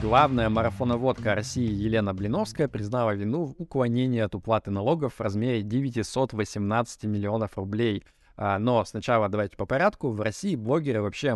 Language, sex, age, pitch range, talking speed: Russian, male, 20-39, 105-125 Hz, 135 wpm